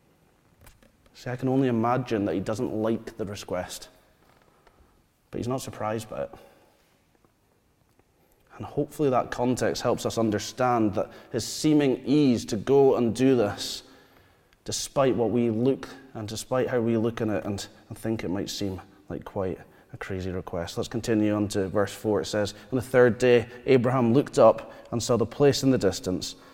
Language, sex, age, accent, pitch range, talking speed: English, male, 30-49, British, 105-130 Hz, 170 wpm